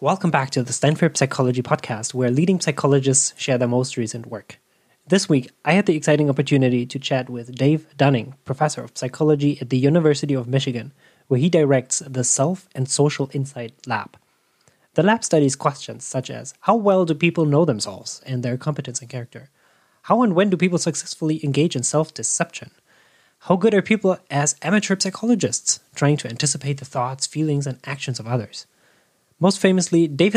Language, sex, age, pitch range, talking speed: English, male, 20-39, 130-170 Hz, 180 wpm